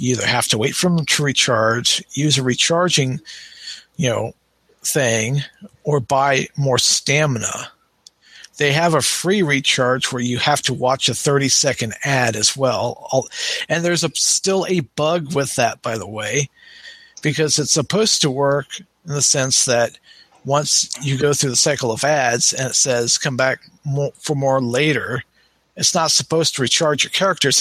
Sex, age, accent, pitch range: male, 50-69, American, 130-165 Hz